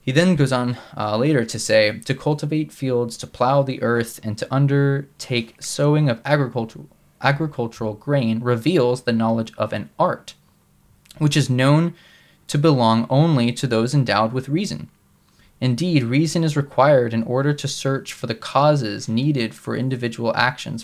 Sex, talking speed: male, 160 wpm